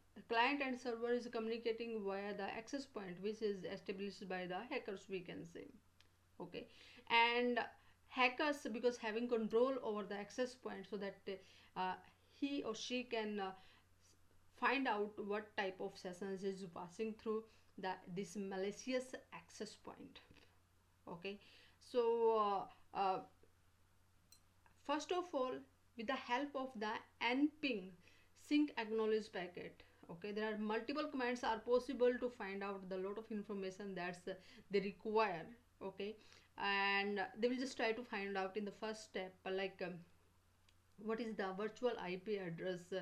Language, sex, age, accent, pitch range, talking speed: English, female, 30-49, Indian, 190-235 Hz, 150 wpm